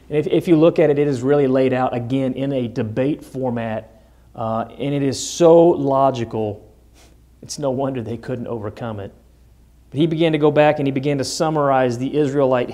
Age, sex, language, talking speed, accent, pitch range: 40-59, male, English, 190 wpm, American, 120-145 Hz